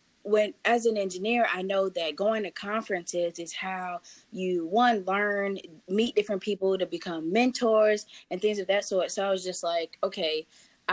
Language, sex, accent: English, female, American